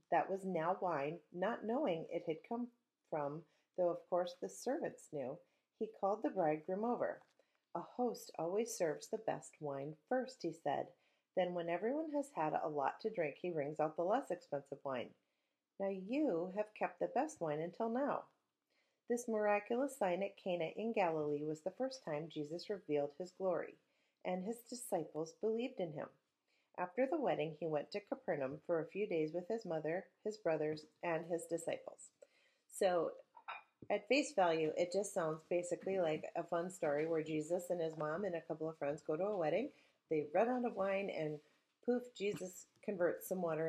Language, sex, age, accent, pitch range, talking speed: English, female, 40-59, American, 160-220 Hz, 185 wpm